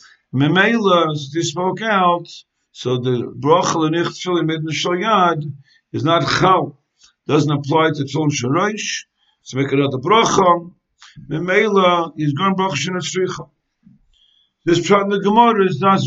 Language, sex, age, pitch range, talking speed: English, male, 60-79, 145-185 Hz, 135 wpm